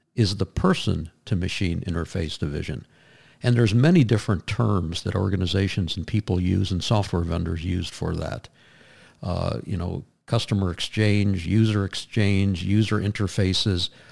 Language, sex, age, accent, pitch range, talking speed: English, male, 50-69, American, 90-115 Hz, 130 wpm